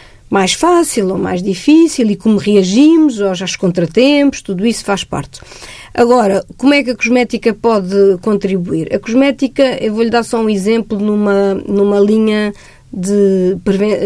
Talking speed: 150 wpm